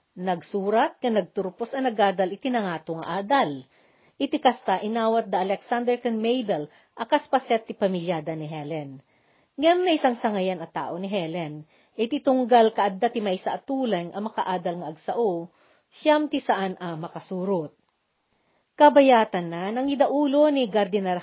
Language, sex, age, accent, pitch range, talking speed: Filipino, female, 40-59, native, 180-245 Hz, 140 wpm